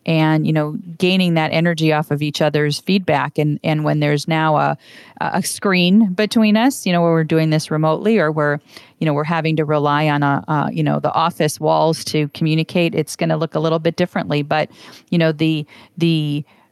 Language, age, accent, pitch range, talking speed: English, 40-59, American, 150-175 Hz, 210 wpm